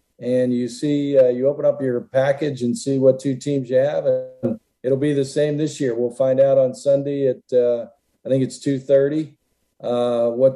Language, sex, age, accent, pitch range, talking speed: English, male, 50-69, American, 125-145 Hz, 205 wpm